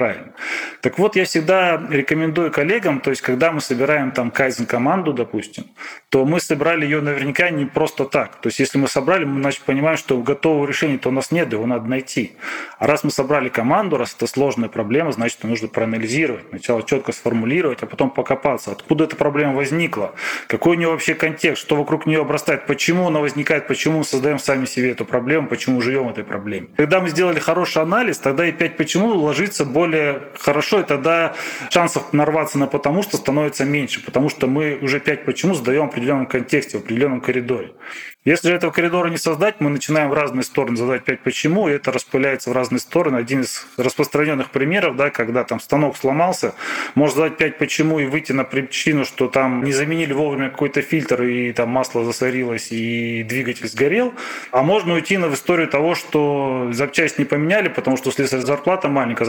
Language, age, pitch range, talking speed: Russian, 20-39, 130-160 Hz, 185 wpm